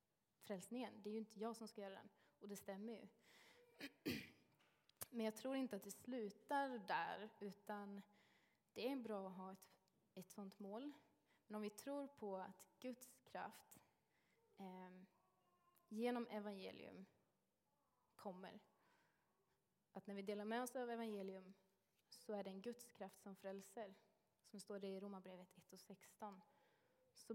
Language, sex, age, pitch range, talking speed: Swedish, female, 20-39, 195-230 Hz, 150 wpm